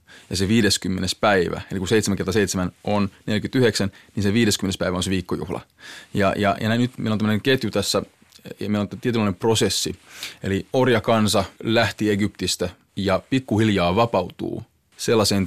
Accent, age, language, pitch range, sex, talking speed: native, 30-49, Finnish, 95-105 Hz, male, 150 wpm